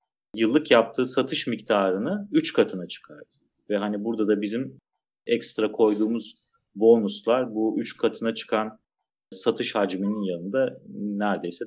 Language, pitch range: Turkish, 105-130 Hz